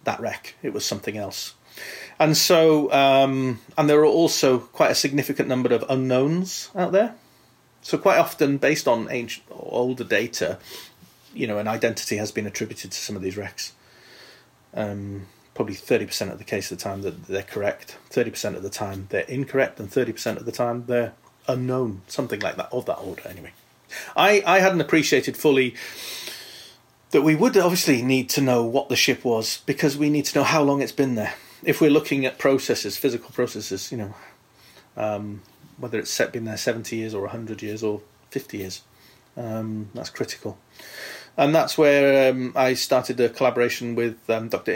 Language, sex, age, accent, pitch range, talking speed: English, male, 30-49, British, 110-140 Hz, 185 wpm